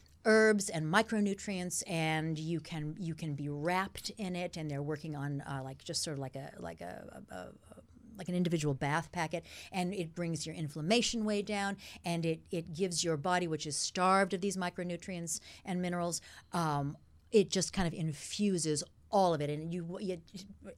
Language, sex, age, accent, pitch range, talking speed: English, female, 50-69, American, 165-210 Hz, 190 wpm